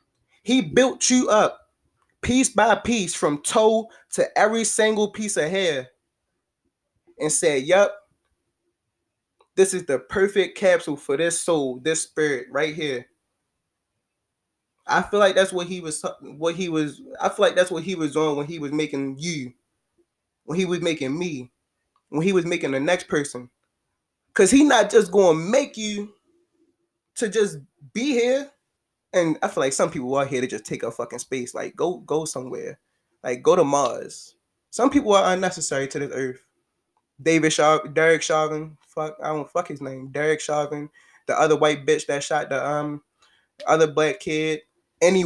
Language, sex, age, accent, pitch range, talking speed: English, male, 20-39, American, 155-200 Hz, 170 wpm